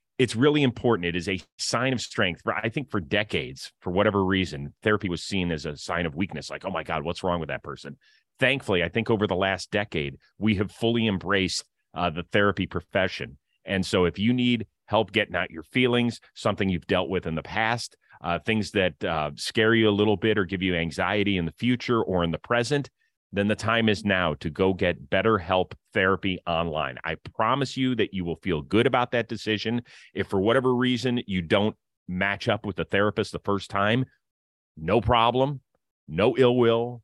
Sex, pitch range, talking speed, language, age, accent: male, 90-115 Hz, 205 wpm, English, 30-49, American